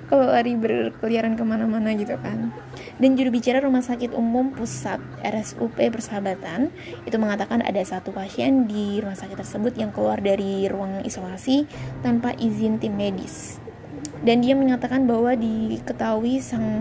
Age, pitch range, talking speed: 20-39, 205-245 Hz, 140 wpm